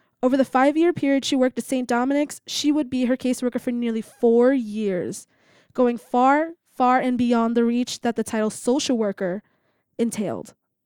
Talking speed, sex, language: 170 wpm, female, English